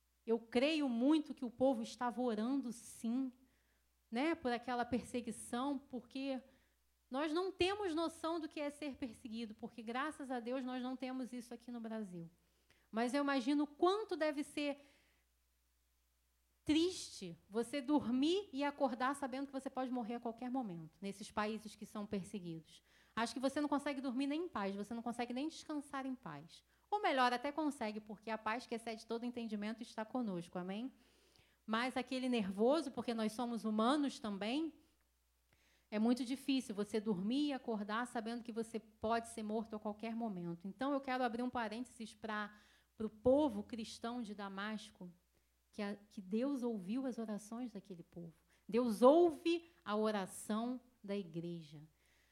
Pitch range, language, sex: 215-275 Hz, Portuguese, female